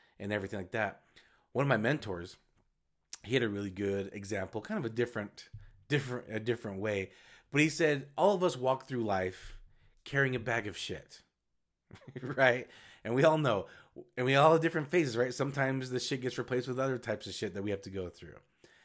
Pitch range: 105-140 Hz